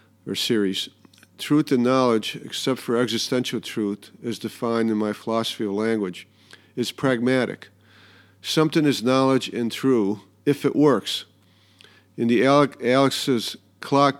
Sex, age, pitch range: male, 50-69, 105-125 Hz